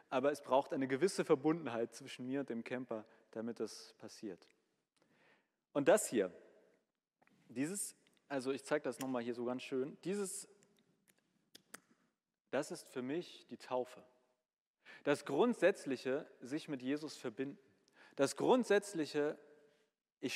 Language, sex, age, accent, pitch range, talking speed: German, male, 40-59, German, 130-175 Hz, 125 wpm